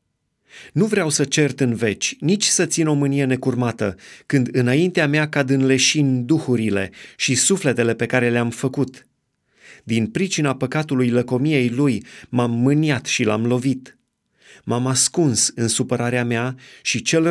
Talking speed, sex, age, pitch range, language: 145 wpm, male, 30-49, 120-145 Hz, Romanian